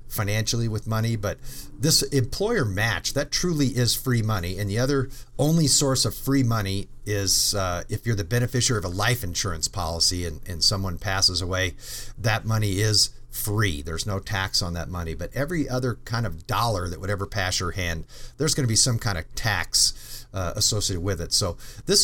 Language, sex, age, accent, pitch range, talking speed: English, male, 50-69, American, 100-130 Hz, 195 wpm